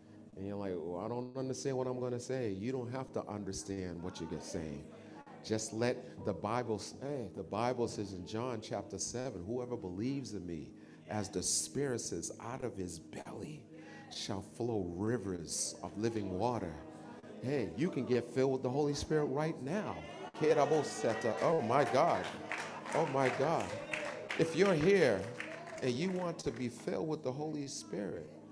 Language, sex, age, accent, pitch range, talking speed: English, male, 40-59, American, 105-150 Hz, 170 wpm